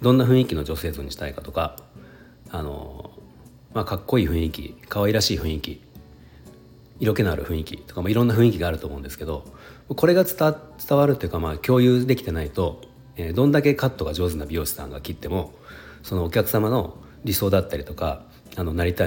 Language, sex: Japanese, male